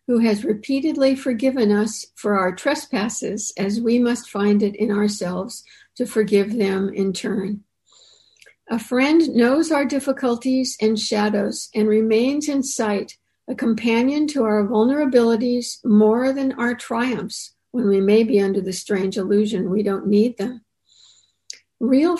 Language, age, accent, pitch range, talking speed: English, 60-79, American, 215-260 Hz, 145 wpm